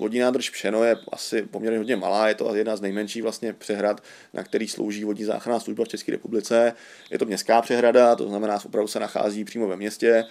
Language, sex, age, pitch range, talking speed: Czech, male, 30-49, 105-120 Hz, 220 wpm